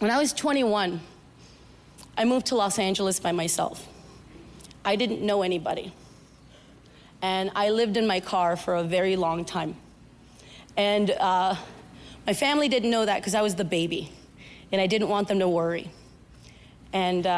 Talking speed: 160 wpm